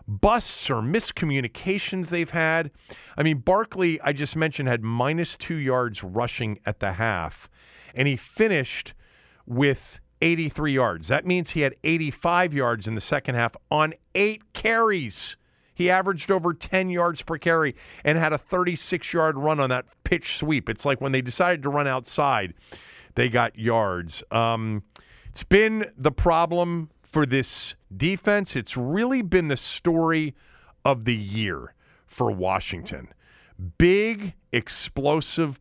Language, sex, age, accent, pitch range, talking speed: English, male, 40-59, American, 110-165 Hz, 145 wpm